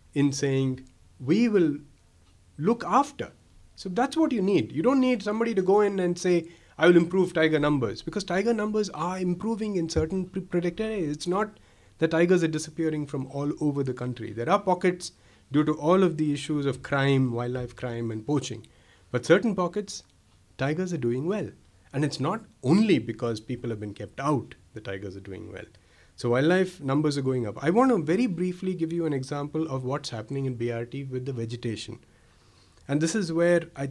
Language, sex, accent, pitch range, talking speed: Hindi, male, native, 115-175 Hz, 195 wpm